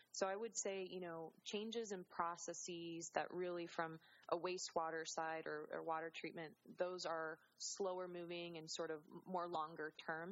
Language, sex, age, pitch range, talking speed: English, female, 20-39, 160-180 Hz, 170 wpm